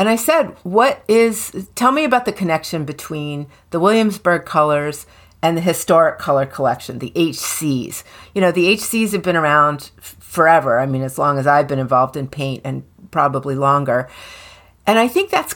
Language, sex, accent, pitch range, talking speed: English, female, American, 140-185 Hz, 175 wpm